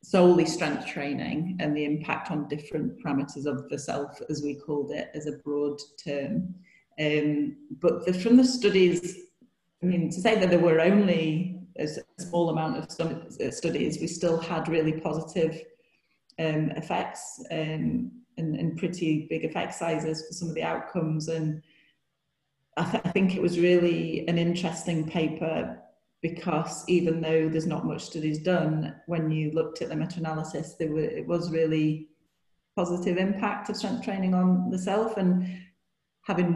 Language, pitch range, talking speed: English, 150-180 Hz, 160 wpm